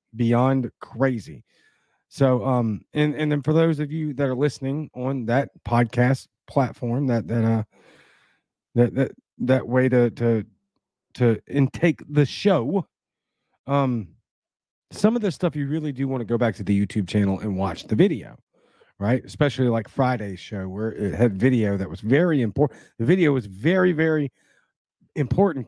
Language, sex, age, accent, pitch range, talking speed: English, male, 40-59, American, 115-155 Hz, 165 wpm